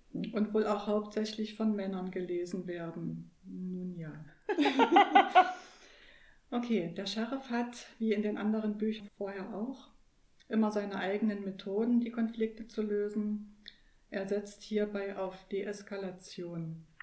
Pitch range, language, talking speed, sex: 195-225 Hz, German, 120 wpm, female